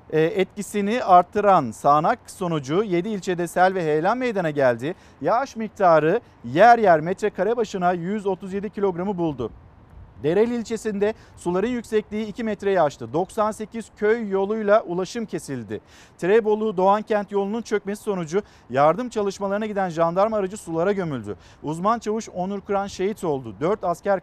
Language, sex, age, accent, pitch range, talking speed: Turkish, male, 50-69, native, 165-210 Hz, 130 wpm